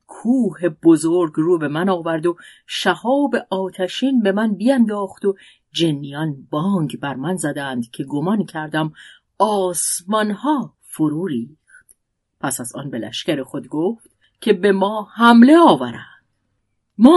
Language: Persian